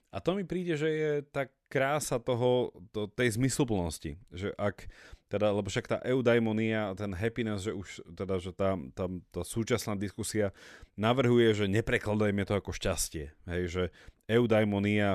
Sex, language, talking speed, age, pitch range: male, Slovak, 160 wpm, 30-49, 95-125 Hz